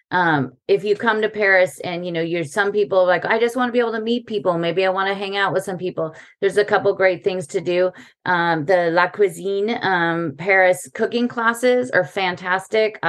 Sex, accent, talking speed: female, American, 220 wpm